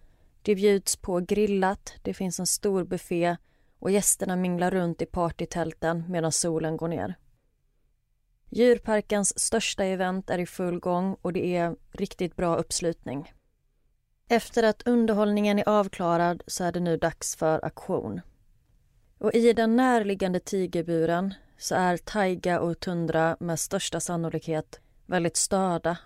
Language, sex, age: Swedish, female, 30-49